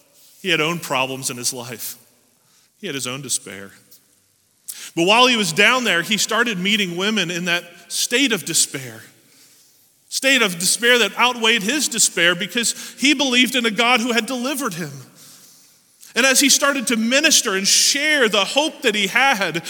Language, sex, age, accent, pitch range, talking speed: English, male, 30-49, American, 175-235 Hz, 175 wpm